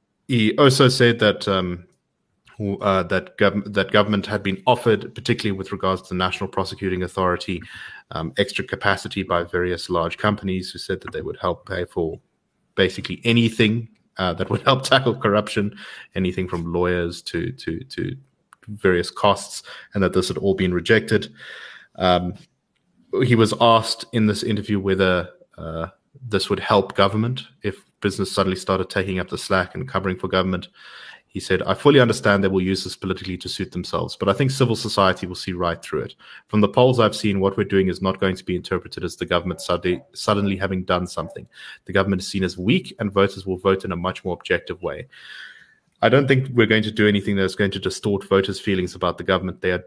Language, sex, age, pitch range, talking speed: English, male, 30-49, 90-105 Hz, 195 wpm